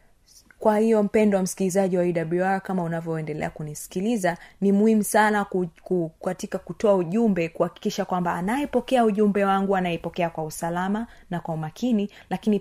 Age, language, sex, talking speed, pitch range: 30-49, Swahili, female, 145 wpm, 180-220 Hz